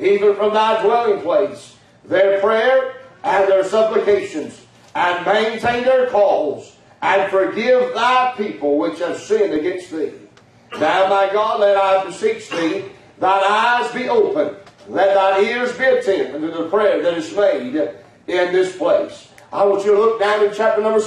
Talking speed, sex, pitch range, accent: 160 wpm, male, 195-220 Hz, American